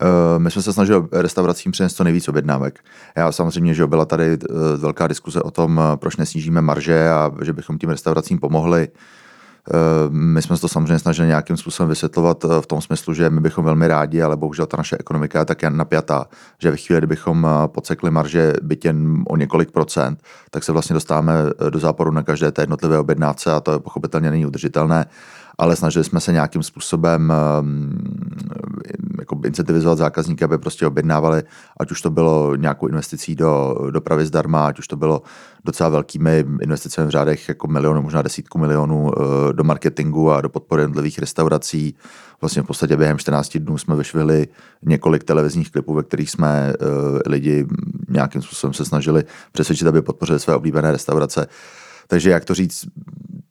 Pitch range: 75-85 Hz